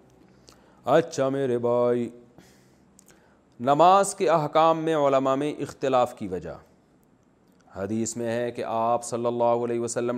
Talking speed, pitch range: 125 wpm, 115-145 Hz